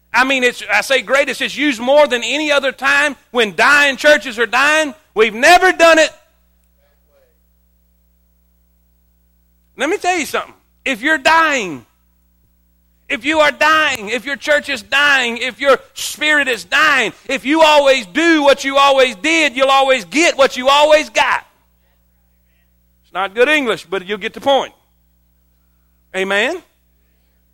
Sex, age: male, 40-59